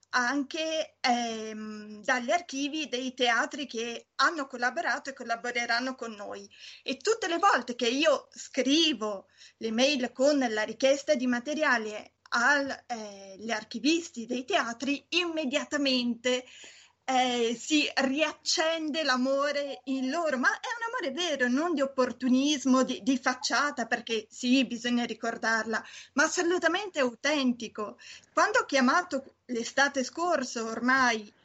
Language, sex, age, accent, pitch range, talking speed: Italian, female, 20-39, native, 245-300 Hz, 120 wpm